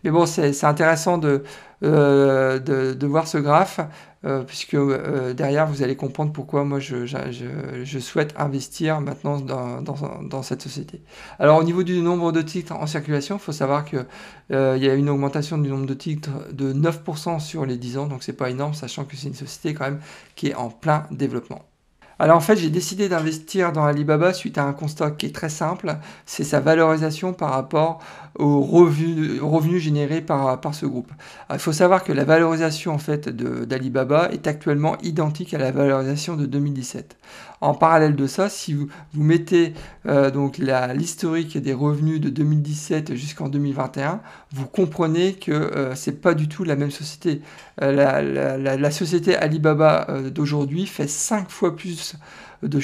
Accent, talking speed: French, 185 wpm